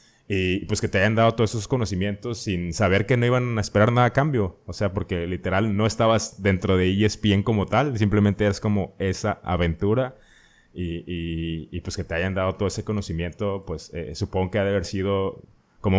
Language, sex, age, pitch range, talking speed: Spanish, male, 20-39, 85-105 Hz, 205 wpm